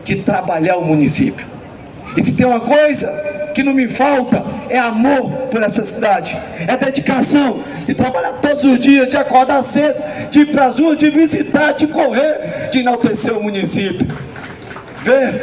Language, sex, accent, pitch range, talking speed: Portuguese, male, Brazilian, 205-265 Hz, 160 wpm